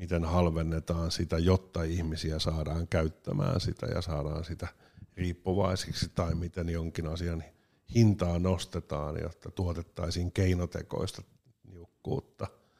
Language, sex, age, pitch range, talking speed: Finnish, male, 50-69, 85-100 Hz, 105 wpm